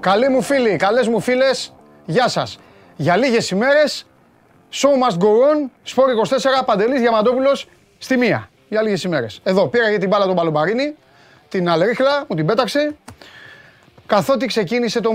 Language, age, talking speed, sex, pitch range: Greek, 30-49, 150 wpm, male, 170-245 Hz